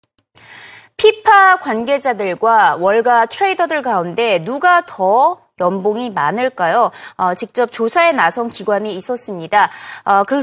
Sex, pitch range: female, 210-330 Hz